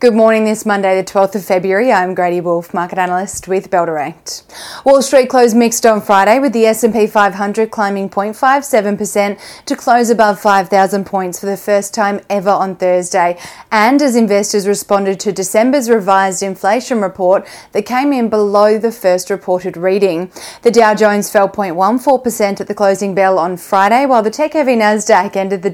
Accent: Australian